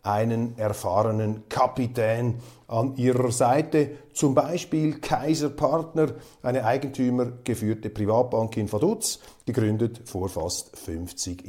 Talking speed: 100 wpm